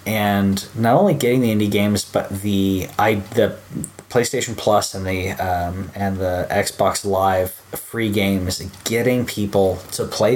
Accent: American